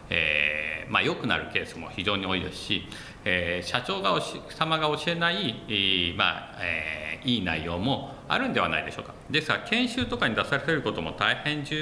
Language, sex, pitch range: Japanese, male, 85-130 Hz